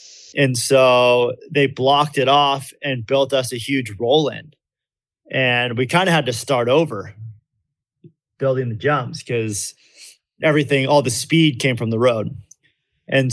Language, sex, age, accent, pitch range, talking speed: English, male, 30-49, American, 120-140 Hz, 150 wpm